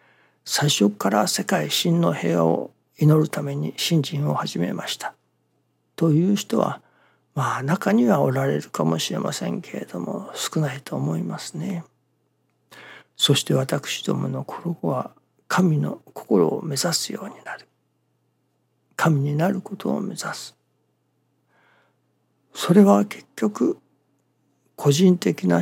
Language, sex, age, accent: Japanese, male, 60-79, native